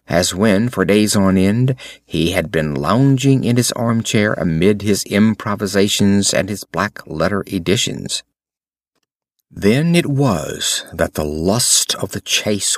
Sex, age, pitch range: male, 50-69, 95-135 Hz